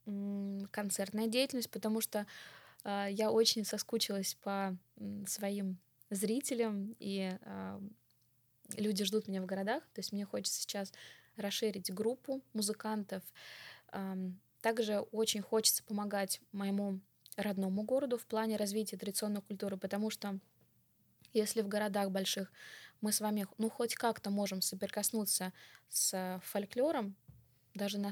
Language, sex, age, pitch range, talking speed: Russian, female, 20-39, 190-220 Hz, 120 wpm